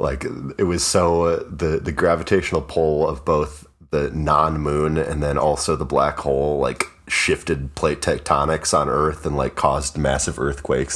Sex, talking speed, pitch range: male, 170 wpm, 70-80 Hz